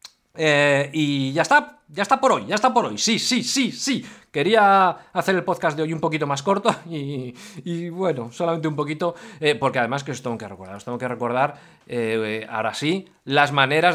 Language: Spanish